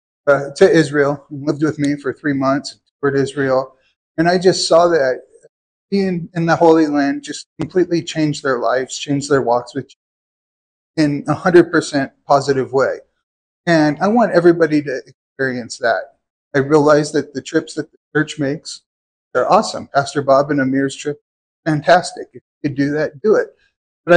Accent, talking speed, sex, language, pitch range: American, 165 wpm, male, English, 140-170 Hz